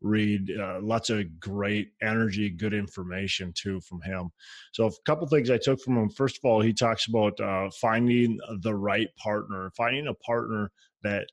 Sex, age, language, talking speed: male, 20-39, English, 185 wpm